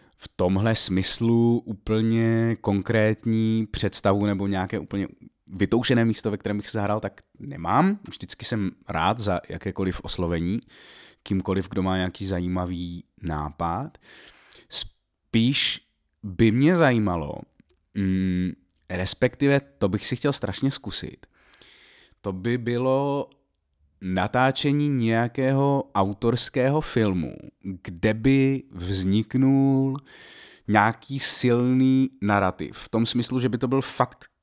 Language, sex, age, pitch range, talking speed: Czech, male, 30-49, 95-120 Hz, 110 wpm